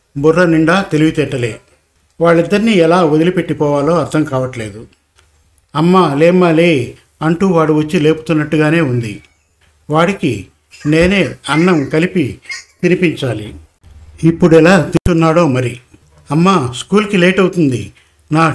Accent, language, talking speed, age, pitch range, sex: native, Telugu, 95 wpm, 50-69, 130-175 Hz, male